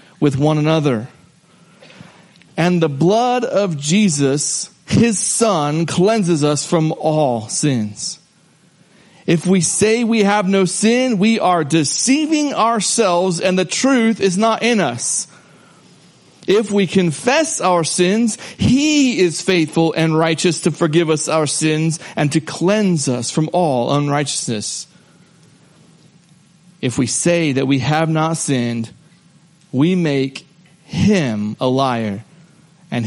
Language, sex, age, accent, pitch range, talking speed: English, male, 40-59, American, 150-190 Hz, 125 wpm